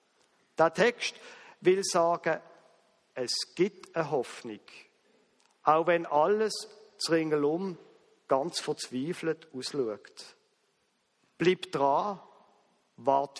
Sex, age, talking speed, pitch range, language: male, 50-69, 85 wpm, 150-195 Hz, German